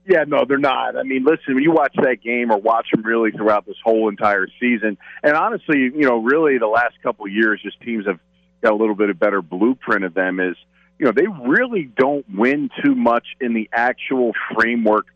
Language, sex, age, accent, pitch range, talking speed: English, male, 40-59, American, 105-140 Hz, 225 wpm